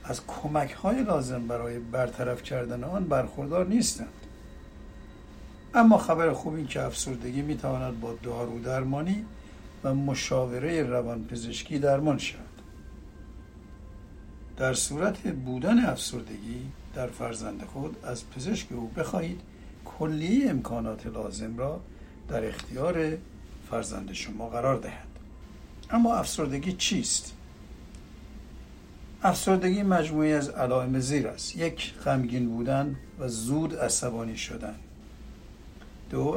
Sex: male